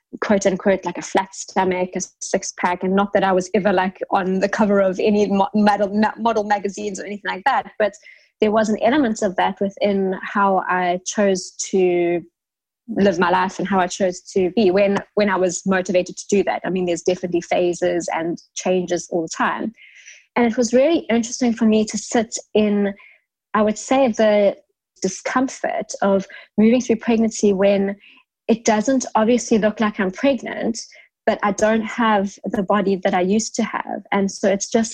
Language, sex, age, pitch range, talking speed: English, female, 20-39, 185-220 Hz, 185 wpm